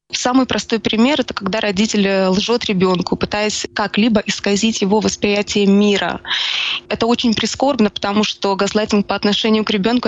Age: 20-39